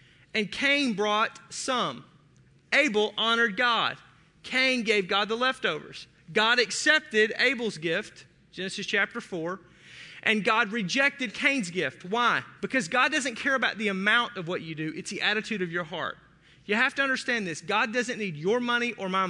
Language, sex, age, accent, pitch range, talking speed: English, male, 30-49, American, 190-245 Hz, 170 wpm